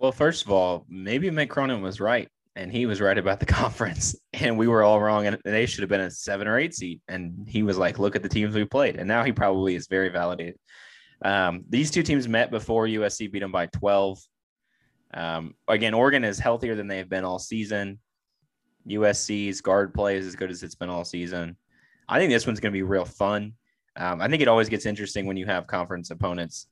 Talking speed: 225 wpm